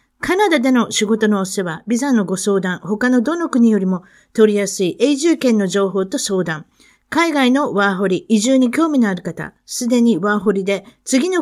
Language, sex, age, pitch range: Japanese, female, 50-69, 200-260 Hz